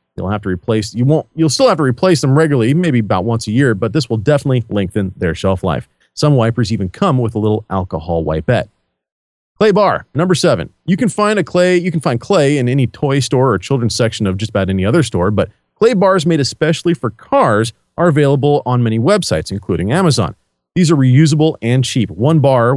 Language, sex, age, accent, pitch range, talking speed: English, male, 40-59, American, 110-155 Hz, 215 wpm